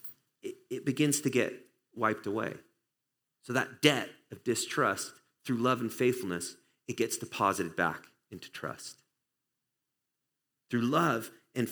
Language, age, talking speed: English, 30-49, 125 wpm